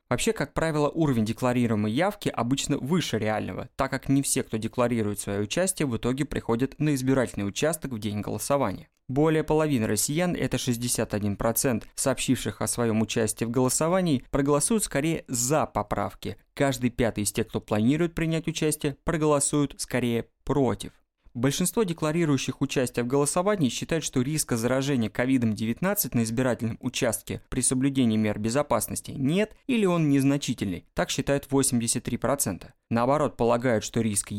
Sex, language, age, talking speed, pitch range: male, Russian, 20-39, 140 wpm, 115-145 Hz